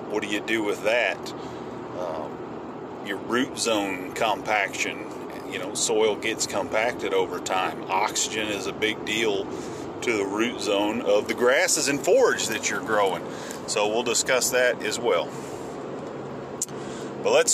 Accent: American